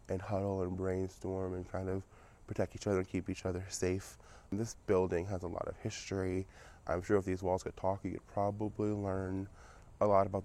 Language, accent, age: English, American, 20-39